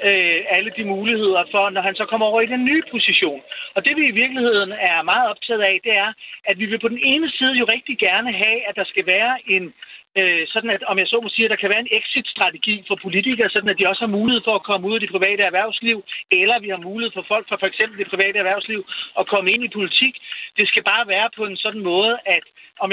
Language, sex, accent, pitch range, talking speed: Danish, male, native, 190-225 Hz, 245 wpm